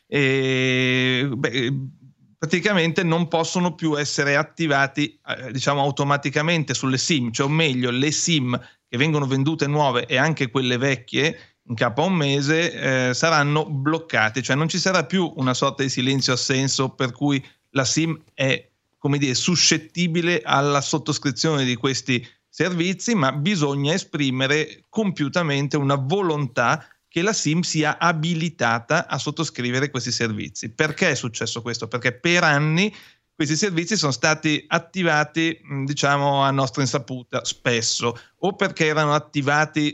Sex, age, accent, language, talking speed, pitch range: male, 30-49, native, Italian, 135 wpm, 130-155 Hz